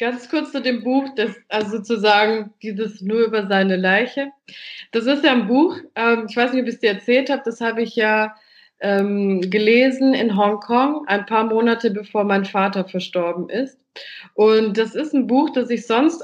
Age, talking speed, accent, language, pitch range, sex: 20-39, 190 wpm, German, German, 200-240 Hz, female